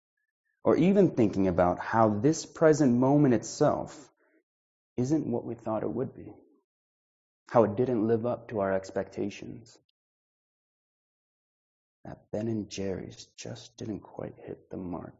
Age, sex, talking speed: 30-49, male, 135 wpm